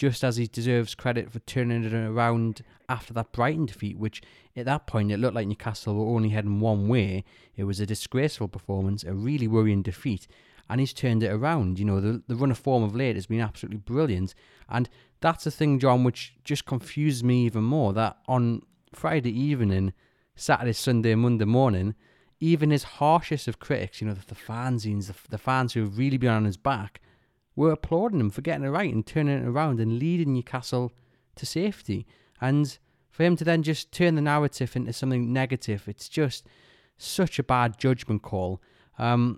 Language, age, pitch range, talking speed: English, 30-49, 110-135 Hz, 195 wpm